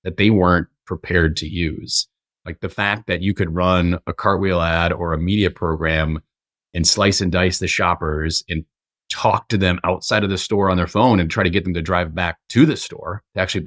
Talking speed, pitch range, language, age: 220 wpm, 85-100 Hz, English, 30-49